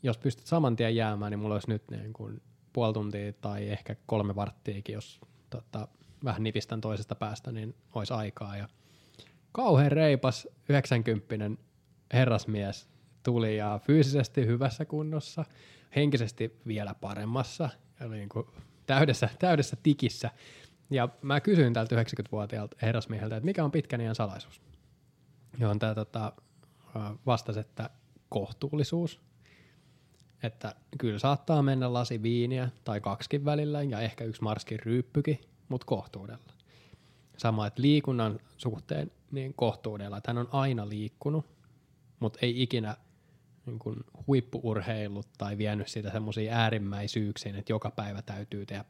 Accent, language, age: native, Finnish, 20-39